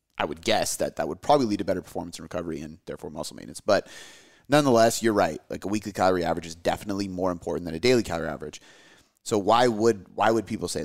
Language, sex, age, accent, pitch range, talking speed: English, male, 30-49, American, 90-110 Hz, 230 wpm